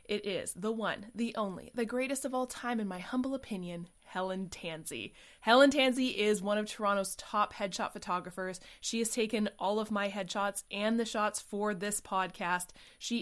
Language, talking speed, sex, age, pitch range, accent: English, 180 wpm, female, 20-39, 185-235 Hz, American